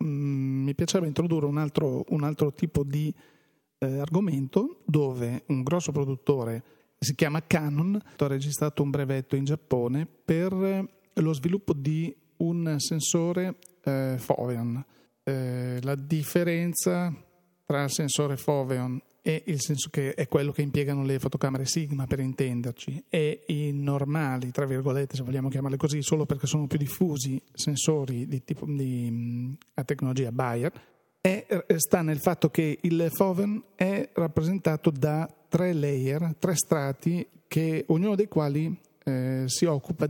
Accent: native